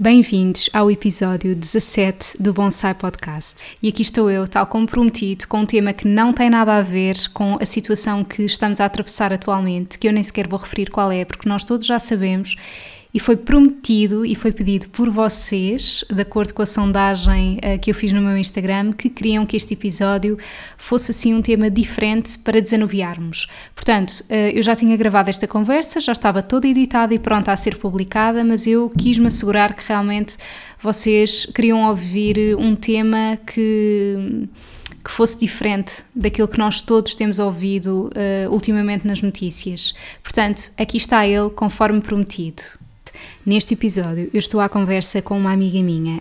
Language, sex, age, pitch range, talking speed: Portuguese, female, 20-39, 195-220 Hz, 170 wpm